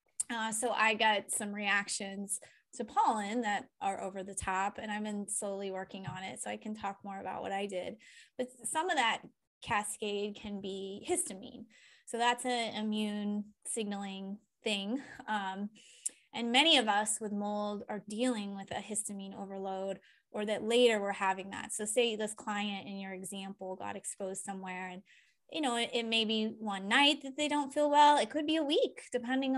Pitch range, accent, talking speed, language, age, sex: 195-235 Hz, American, 185 wpm, English, 20-39, female